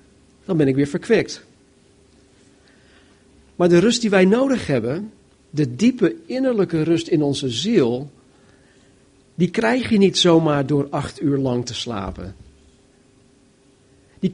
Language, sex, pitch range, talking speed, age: Dutch, male, 130-185 Hz, 125 wpm, 50-69